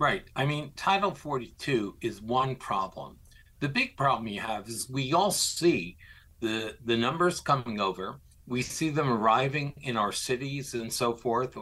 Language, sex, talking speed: English, male, 165 wpm